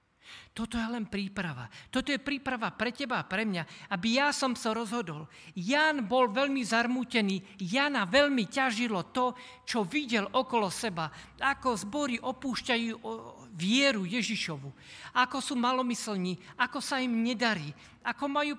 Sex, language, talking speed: male, Slovak, 140 wpm